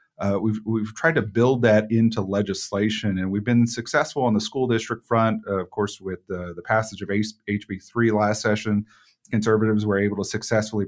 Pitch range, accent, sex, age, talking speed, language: 100-115 Hz, American, male, 40-59, 195 wpm, English